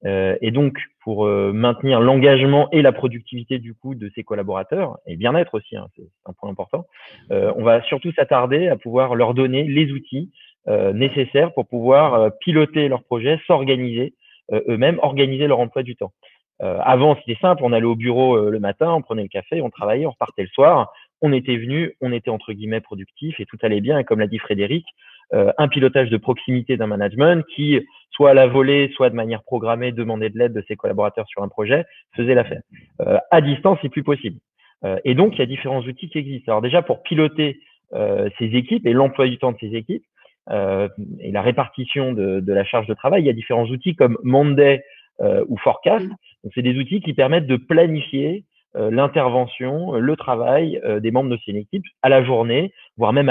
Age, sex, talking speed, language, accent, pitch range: 30-49, male, 210 wpm, French, French, 115-145 Hz